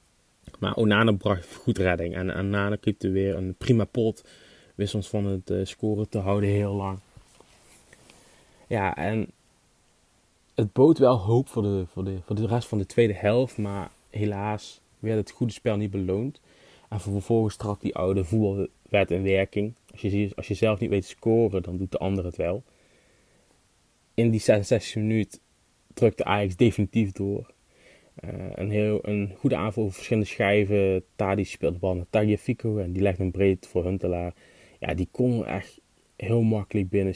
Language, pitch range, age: Dutch, 95-110 Hz, 20-39